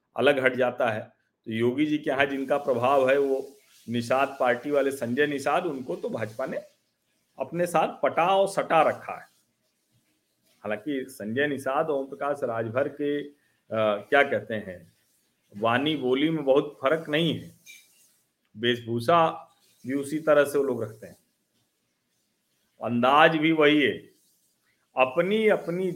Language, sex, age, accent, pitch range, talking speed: Hindi, male, 50-69, native, 140-190 Hz, 145 wpm